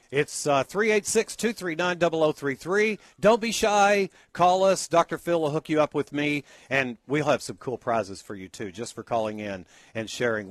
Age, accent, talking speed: 50-69, American, 175 wpm